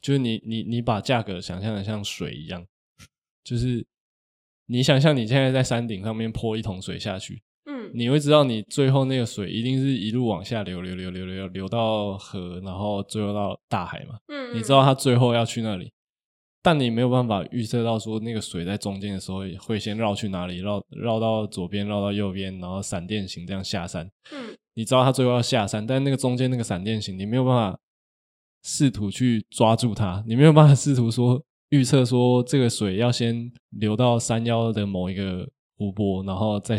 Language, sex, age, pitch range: Chinese, male, 20-39, 100-125 Hz